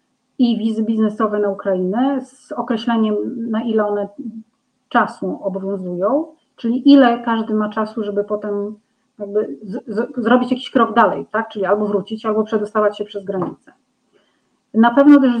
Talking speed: 130 wpm